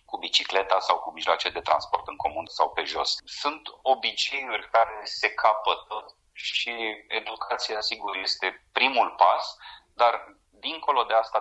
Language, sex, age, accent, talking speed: Romanian, male, 30-49, native, 140 wpm